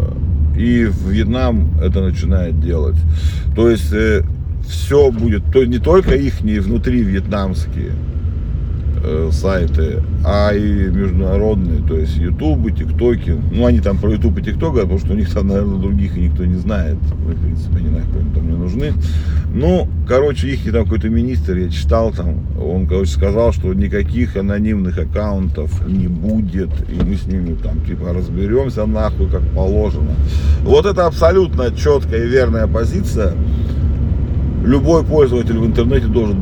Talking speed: 145 wpm